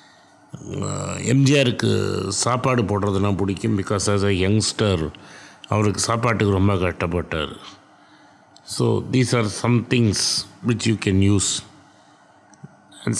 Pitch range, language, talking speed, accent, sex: 95-115 Hz, Tamil, 95 wpm, native, male